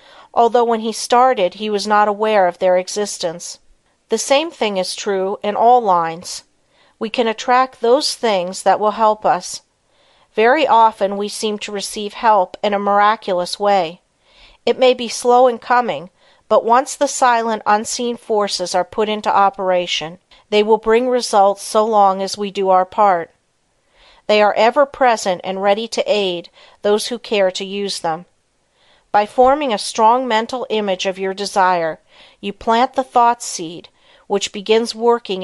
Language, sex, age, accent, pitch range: Japanese, female, 50-69, American, 190-230 Hz